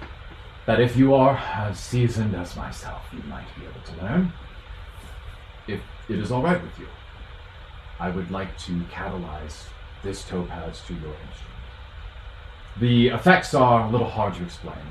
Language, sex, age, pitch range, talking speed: English, male, 30-49, 85-120 Hz, 155 wpm